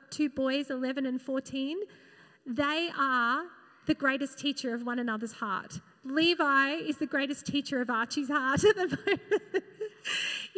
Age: 30-49